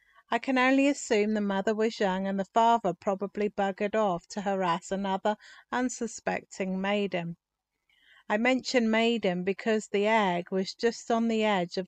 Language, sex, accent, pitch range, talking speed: English, female, British, 190-235 Hz, 155 wpm